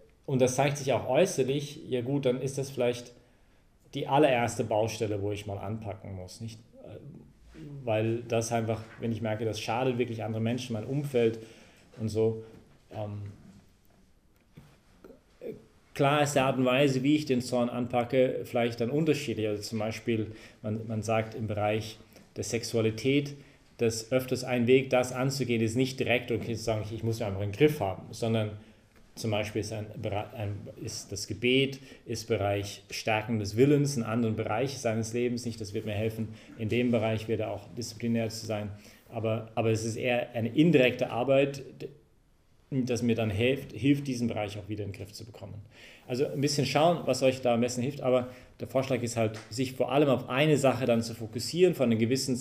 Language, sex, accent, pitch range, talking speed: English, male, German, 110-130 Hz, 180 wpm